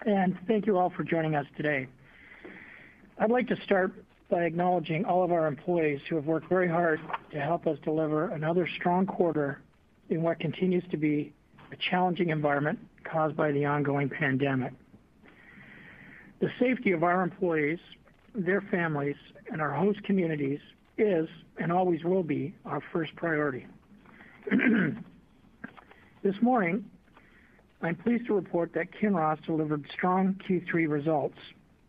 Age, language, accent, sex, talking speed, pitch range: 60-79, English, American, male, 140 wpm, 155-190 Hz